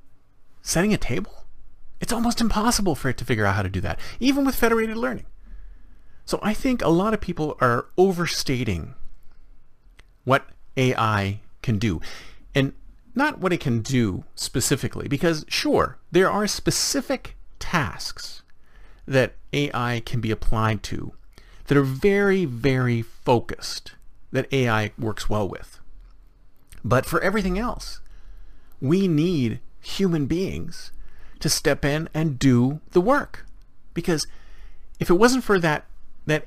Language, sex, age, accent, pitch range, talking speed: English, male, 40-59, American, 115-190 Hz, 135 wpm